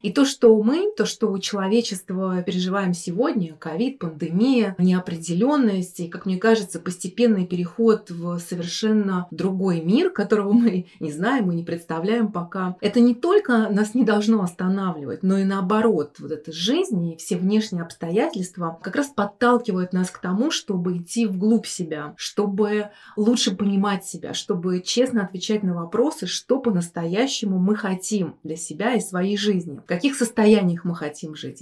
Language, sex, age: Russian, female, 30-49